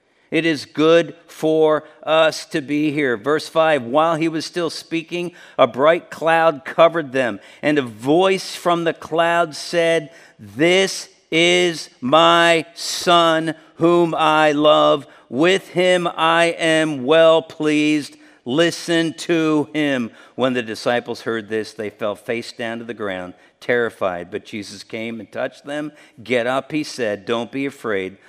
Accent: American